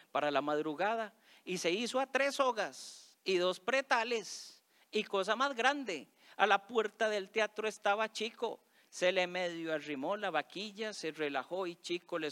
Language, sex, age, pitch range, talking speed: Spanish, male, 40-59, 140-210 Hz, 165 wpm